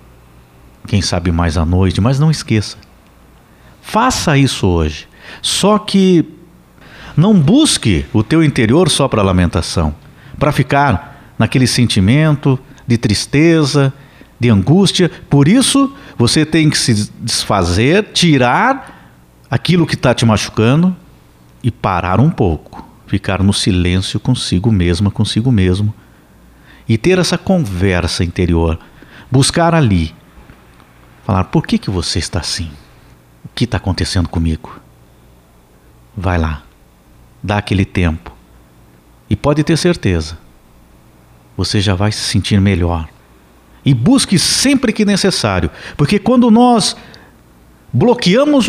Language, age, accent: Portuguese, 60-79, Brazilian